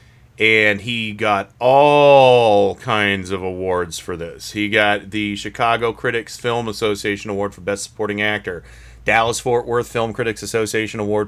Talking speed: 150 wpm